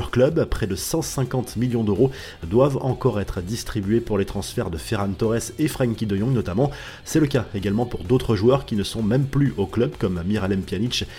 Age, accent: 30-49, French